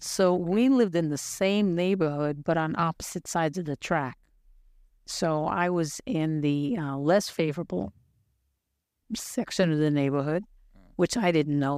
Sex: female